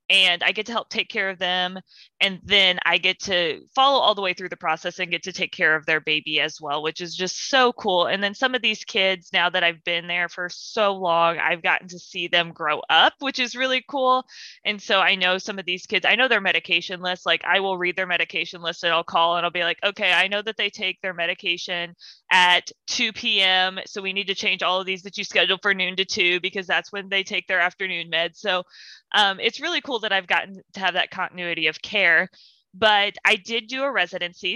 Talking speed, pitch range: 245 wpm, 170-200 Hz